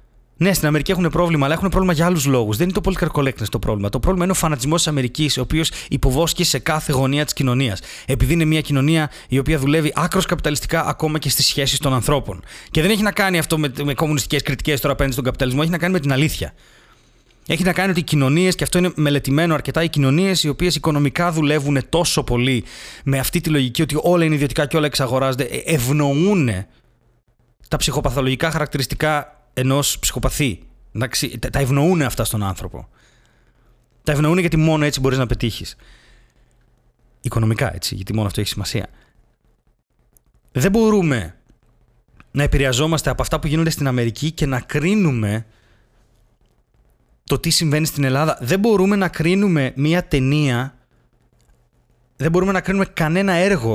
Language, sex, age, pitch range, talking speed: Greek, male, 30-49, 125-160 Hz, 170 wpm